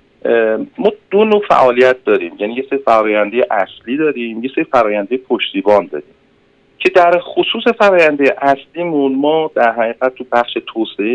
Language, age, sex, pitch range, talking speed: Persian, 40-59, male, 110-155 Hz, 140 wpm